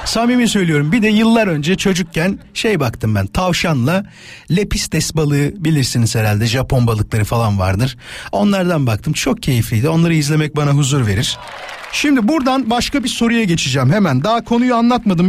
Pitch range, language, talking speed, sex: 150-195 Hz, Turkish, 150 wpm, male